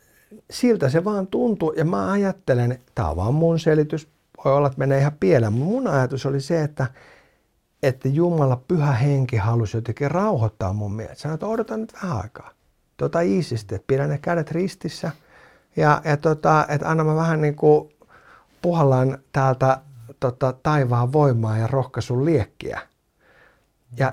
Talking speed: 145 wpm